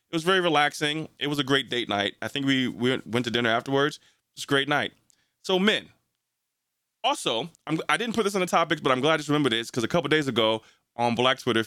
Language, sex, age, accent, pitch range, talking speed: English, male, 30-49, American, 120-165 Hz, 250 wpm